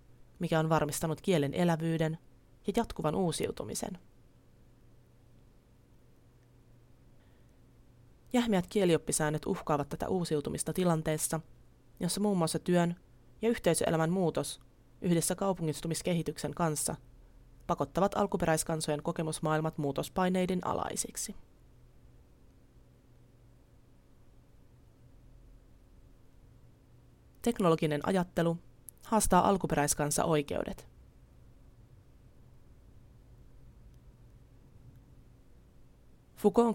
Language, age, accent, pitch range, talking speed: Finnish, 30-49, native, 130-175 Hz, 55 wpm